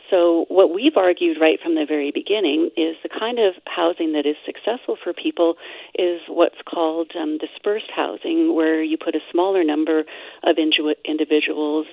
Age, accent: 40-59, American